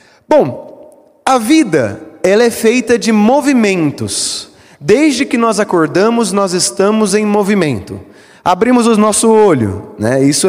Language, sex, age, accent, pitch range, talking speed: Portuguese, male, 20-39, Brazilian, 150-215 Hz, 125 wpm